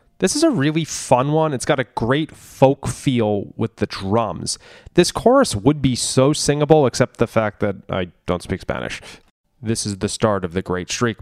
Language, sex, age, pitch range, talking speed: English, male, 20-39, 110-155 Hz, 200 wpm